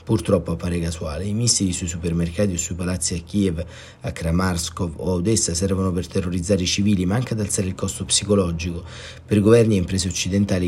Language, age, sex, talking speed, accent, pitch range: Italian, 30-49, male, 190 wpm, native, 90-110 Hz